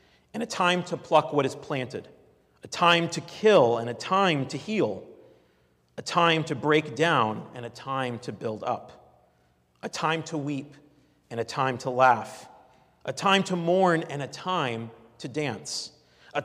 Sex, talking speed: male, 170 wpm